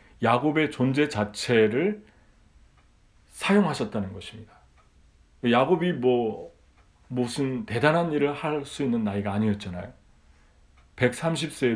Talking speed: 75 wpm